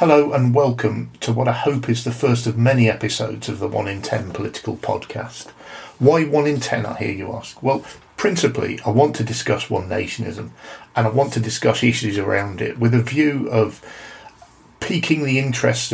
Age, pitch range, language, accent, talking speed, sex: 40-59, 110-125 Hz, English, British, 190 wpm, male